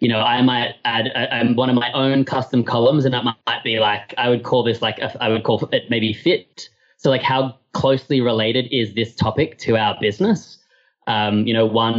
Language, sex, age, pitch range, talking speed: English, male, 20-39, 110-130 Hz, 215 wpm